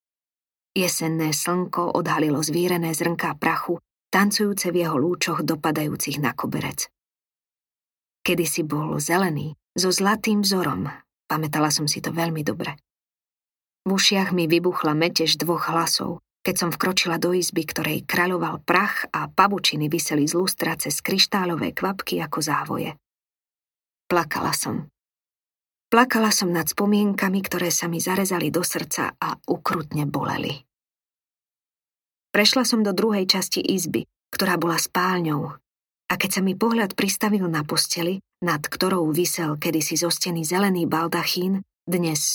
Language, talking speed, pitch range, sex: Slovak, 130 wpm, 160-190 Hz, female